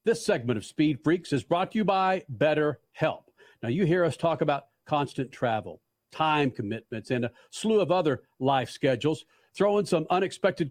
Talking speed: 175 wpm